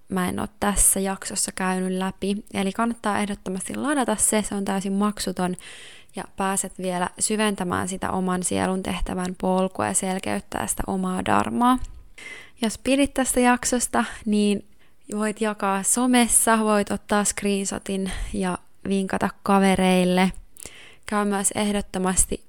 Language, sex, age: Finnish, female, 20-39